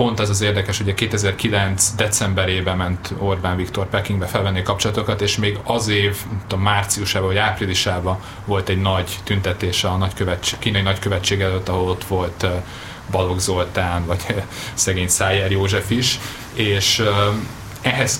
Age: 30-49